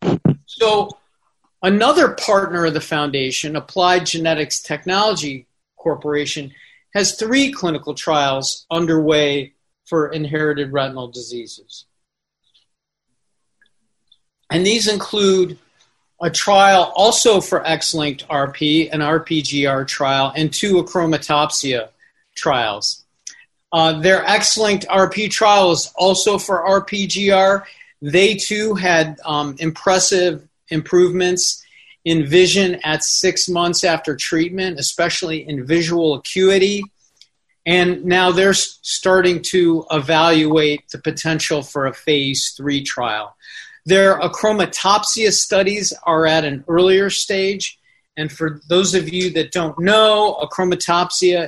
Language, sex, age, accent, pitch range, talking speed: English, male, 40-59, American, 155-195 Hz, 105 wpm